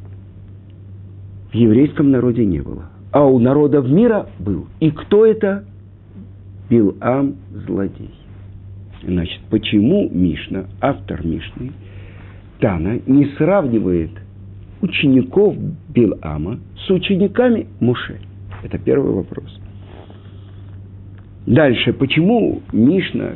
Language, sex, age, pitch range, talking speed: Russian, male, 50-69, 95-130 Hz, 85 wpm